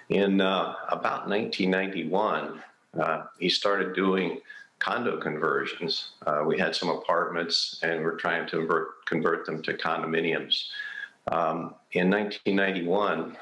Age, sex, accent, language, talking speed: 50-69, male, American, English, 125 wpm